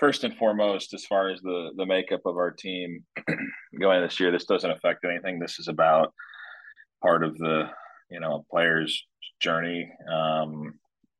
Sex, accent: male, American